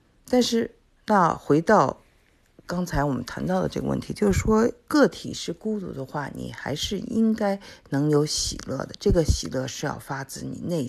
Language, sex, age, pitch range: Chinese, female, 50-69, 115-160 Hz